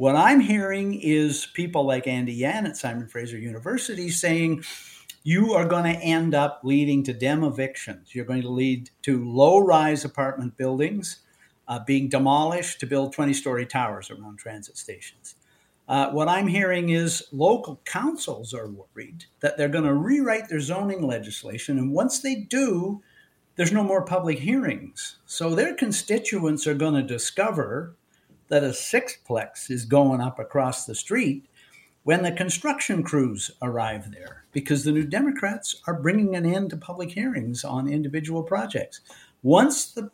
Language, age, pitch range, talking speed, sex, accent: English, 50-69, 135-195 Hz, 155 wpm, male, American